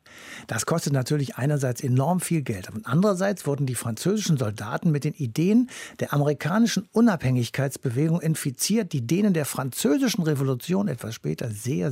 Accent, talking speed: German, 140 wpm